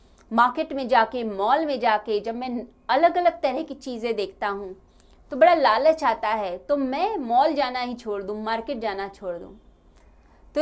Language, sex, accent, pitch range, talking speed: Hindi, female, native, 205-310 Hz, 180 wpm